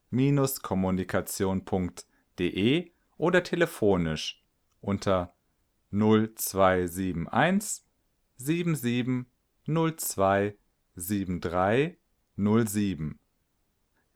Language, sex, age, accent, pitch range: German, male, 40-59, German, 95-130 Hz